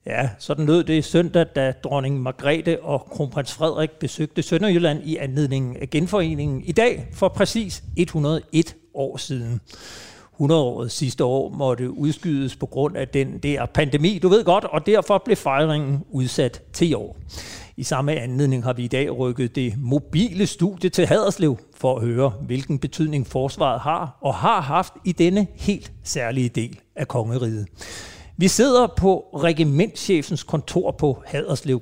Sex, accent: male, native